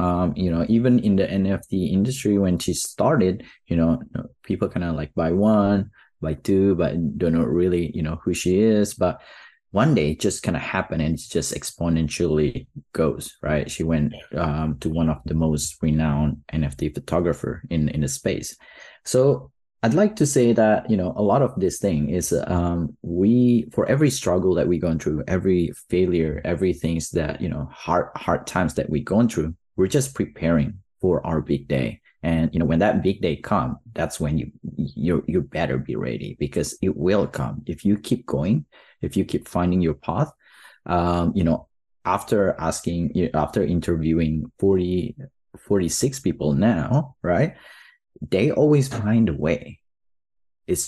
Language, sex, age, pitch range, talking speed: English, male, 30-49, 80-105 Hz, 175 wpm